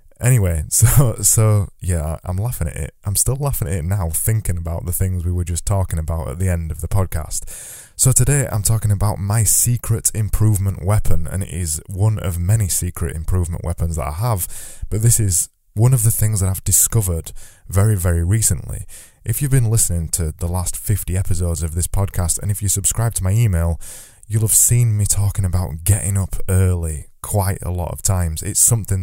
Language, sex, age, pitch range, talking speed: English, male, 20-39, 85-105 Hz, 205 wpm